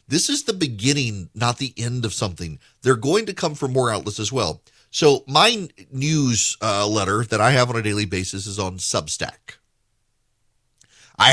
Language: English